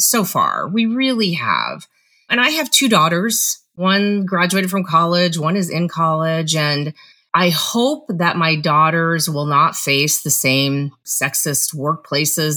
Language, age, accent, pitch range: English, 30-49, American, 165-225 Hz